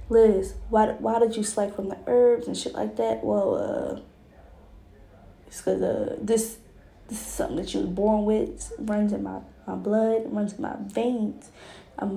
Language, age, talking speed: English, 20-39, 190 wpm